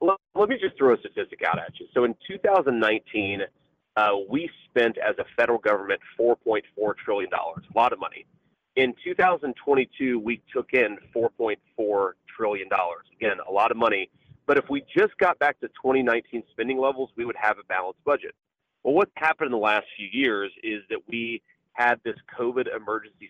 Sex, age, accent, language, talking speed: male, 30-49, American, English, 180 wpm